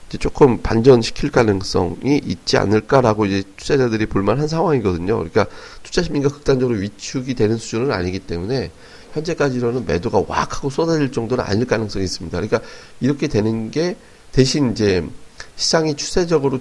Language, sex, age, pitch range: Korean, male, 30-49, 100-135 Hz